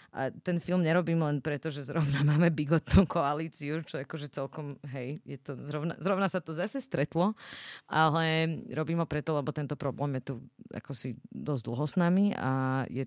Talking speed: 185 wpm